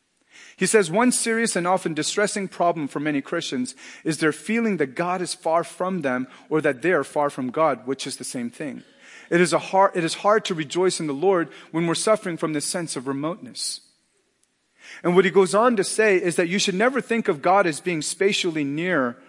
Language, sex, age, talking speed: English, male, 40-59, 210 wpm